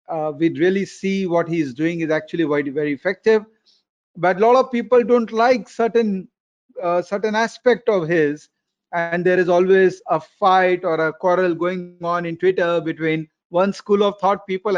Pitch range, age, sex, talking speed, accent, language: 170-210 Hz, 40-59, male, 180 wpm, native, Tamil